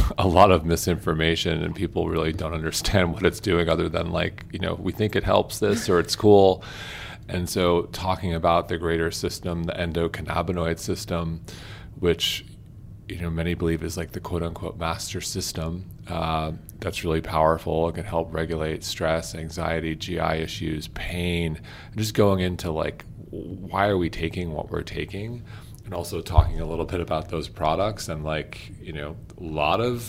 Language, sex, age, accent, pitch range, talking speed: English, male, 30-49, American, 80-100 Hz, 175 wpm